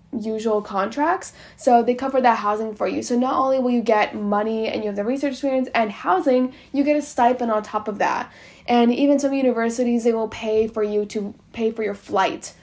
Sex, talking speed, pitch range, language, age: female, 220 wpm, 210-255 Hz, English, 10-29